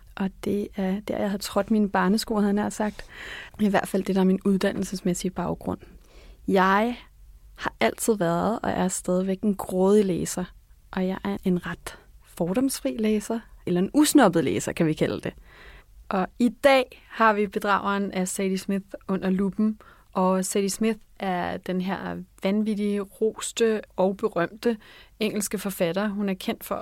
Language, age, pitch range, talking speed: Danish, 30-49, 185-220 Hz, 165 wpm